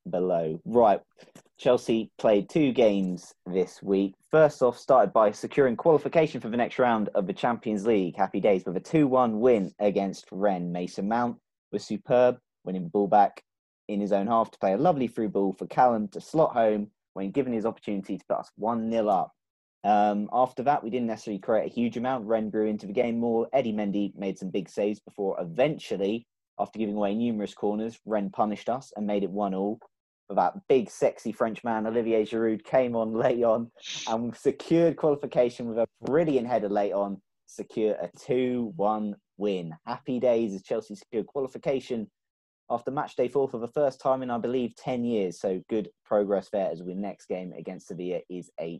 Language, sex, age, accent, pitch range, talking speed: English, male, 20-39, British, 100-125 Hz, 190 wpm